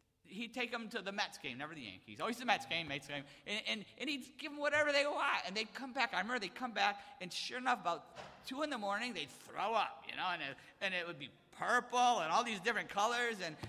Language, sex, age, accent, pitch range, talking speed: English, male, 50-69, American, 165-255 Hz, 265 wpm